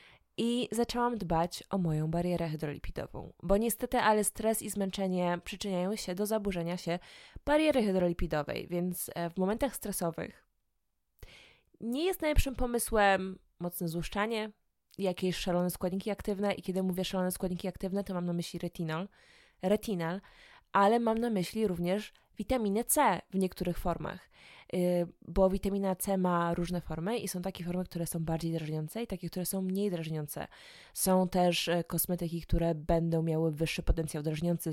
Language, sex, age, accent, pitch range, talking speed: Polish, female, 20-39, native, 170-205 Hz, 145 wpm